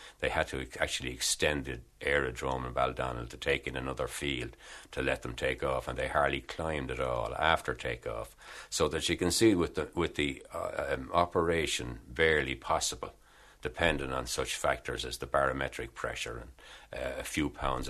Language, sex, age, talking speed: English, male, 60-79, 180 wpm